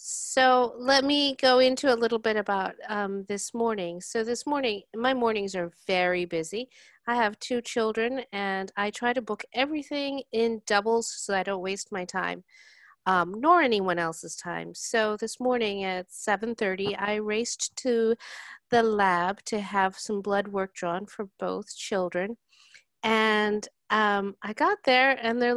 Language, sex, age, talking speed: English, female, 40-59, 160 wpm